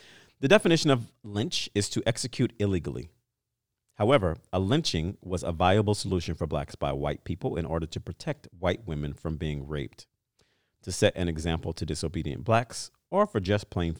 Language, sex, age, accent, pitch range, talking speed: English, male, 40-59, American, 85-120 Hz, 170 wpm